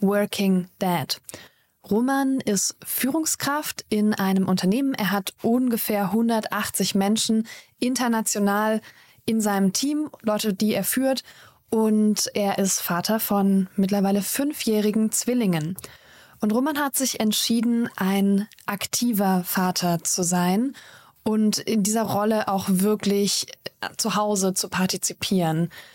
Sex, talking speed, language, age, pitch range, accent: female, 115 wpm, German, 20-39, 195-230 Hz, German